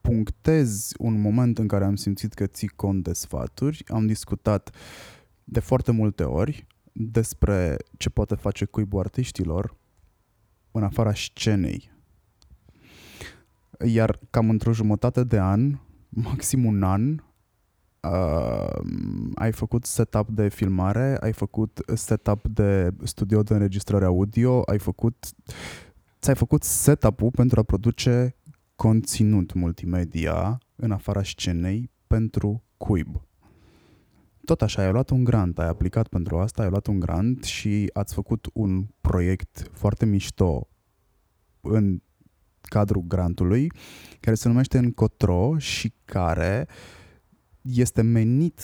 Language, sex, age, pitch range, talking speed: Romanian, male, 20-39, 95-115 Hz, 120 wpm